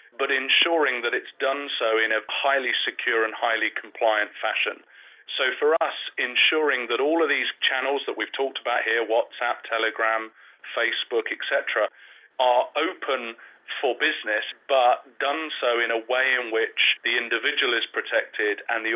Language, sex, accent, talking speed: English, male, British, 160 wpm